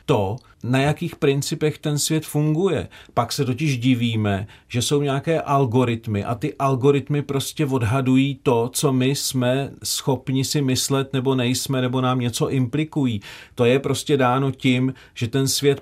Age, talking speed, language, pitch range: 40-59, 155 wpm, Czech, 120-150 Hz